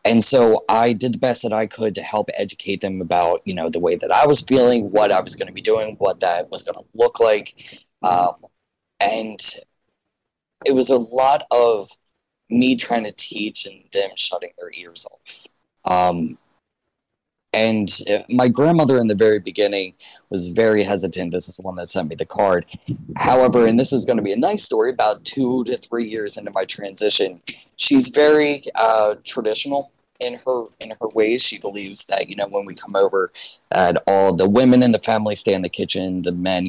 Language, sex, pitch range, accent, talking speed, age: English, male, 100-140 Hz, American, 200 wpm, 20-39